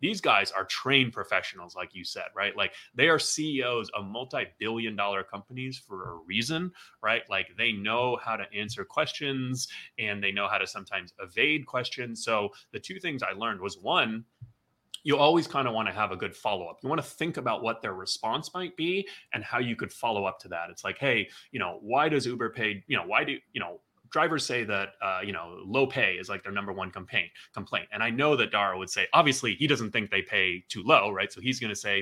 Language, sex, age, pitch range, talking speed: English, male, 30-49, 100-130 Hz, 235 wpm